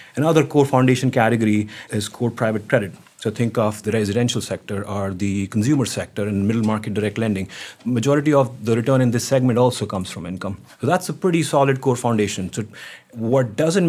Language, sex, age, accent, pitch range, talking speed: English, male, 30-49, Indian, 110-135 Hz, 190 wpm